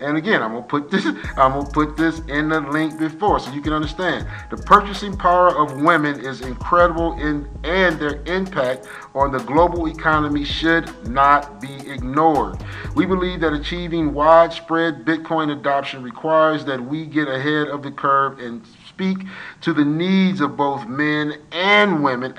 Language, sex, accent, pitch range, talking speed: English, male, American, 140-170 Hz, 165 wpm